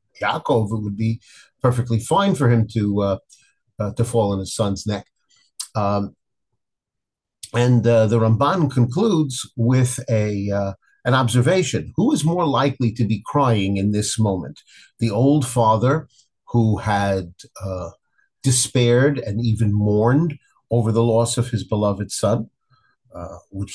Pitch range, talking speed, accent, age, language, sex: 100-125 Hz, 145 wpm, American, 50-69, English, male